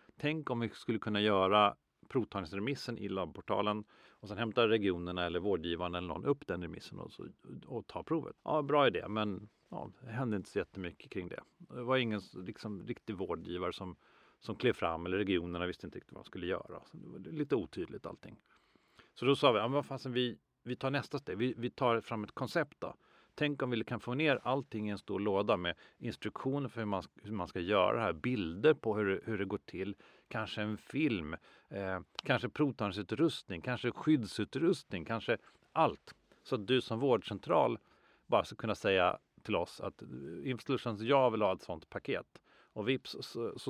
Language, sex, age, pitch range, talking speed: Swedish, male, 40-59, 100-130 Hz, 195 wpm